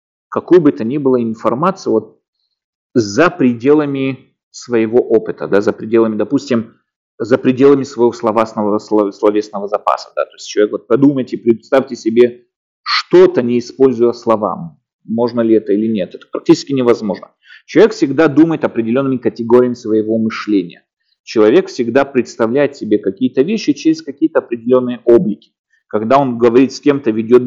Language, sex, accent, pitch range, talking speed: Russian, male, native, 115-155 Hz, 140 wpm